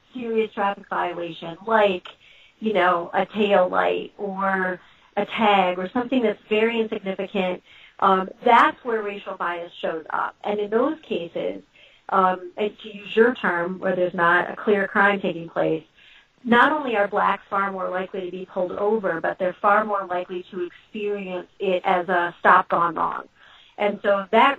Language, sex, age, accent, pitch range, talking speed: English, female, 40-59, American, 185-215 Hz, 165 wpm